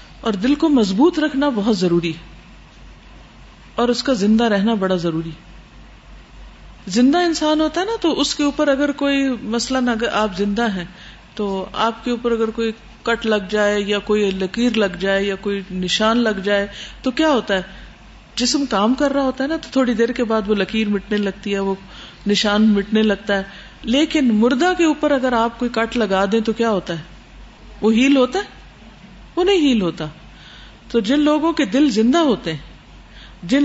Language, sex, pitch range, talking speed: Urdu, female, 200-275 Hz, 190 wpm